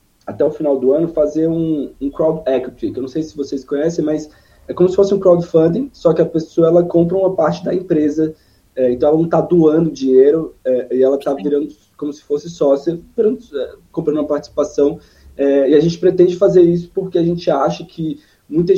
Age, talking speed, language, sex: 20-39, 215 wpm, Portuguese, male